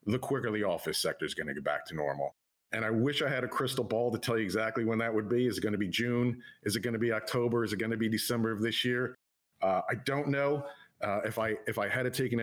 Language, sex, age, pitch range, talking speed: English, male, 50-69, 105-125 Hz, 300 wpm